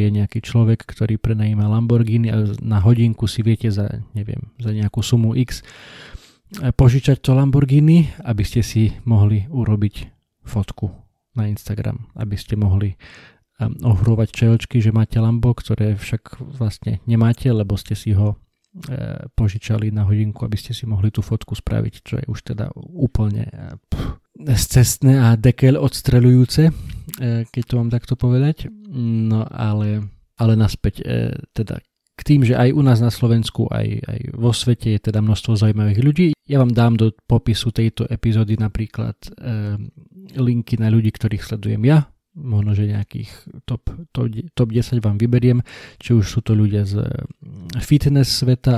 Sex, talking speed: male, 150 wpm